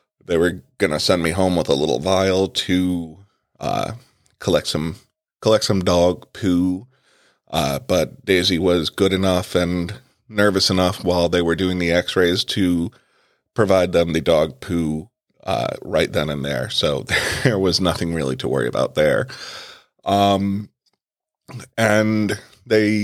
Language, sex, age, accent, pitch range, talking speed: English, male, 30-49, American, 85-100 Hz, 150 wpm